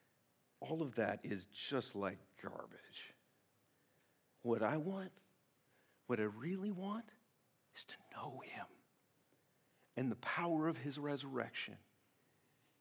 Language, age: English, 50-69